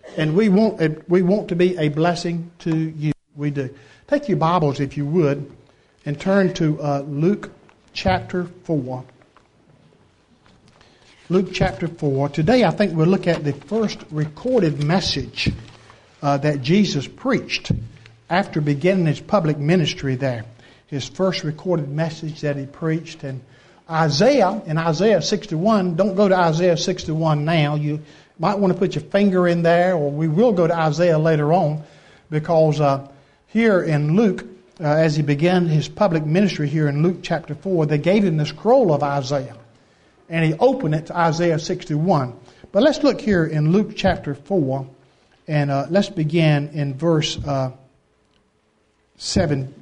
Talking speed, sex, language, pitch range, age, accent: 160 wpm, male, English, 145-185 Hz, 60-79, American